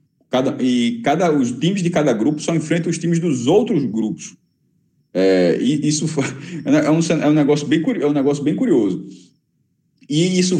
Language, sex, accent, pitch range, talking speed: Portuguese, male, Brazilian, 145-205 Hz, 175 wpm